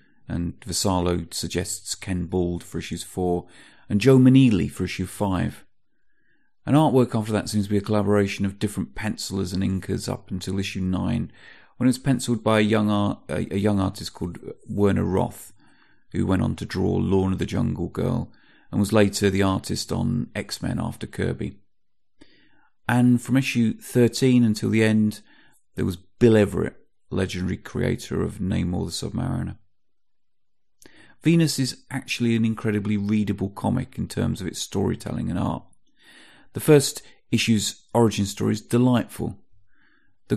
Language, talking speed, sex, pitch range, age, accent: English, 155 wpm, male, 95-120 Hz, 30-49, British